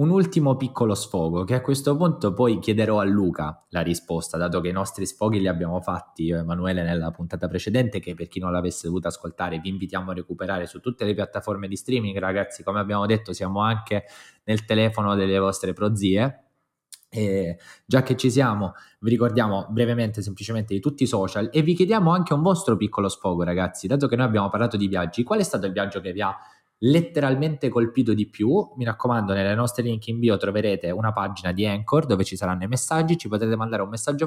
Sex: male